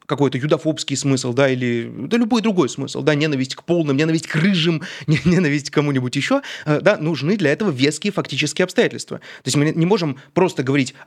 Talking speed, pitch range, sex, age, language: 185 wpm, 130-175 Hz, male, 30-49, Russian